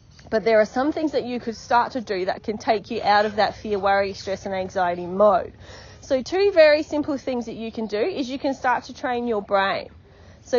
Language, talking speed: English, 240 wpm